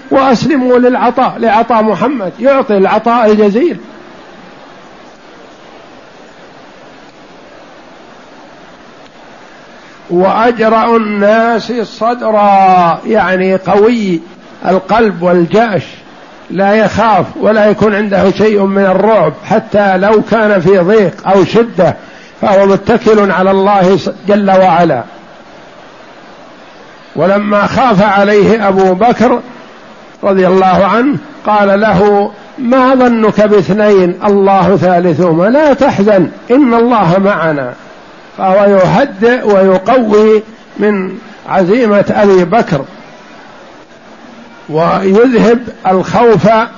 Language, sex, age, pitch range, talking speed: Arabic, male, 50-69, 190-225 Hz, 80 wpm